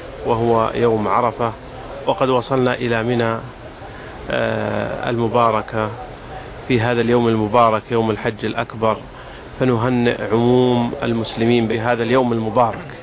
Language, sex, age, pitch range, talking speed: Arabic, male, 40-59, 115-130 Hz, 95 wpm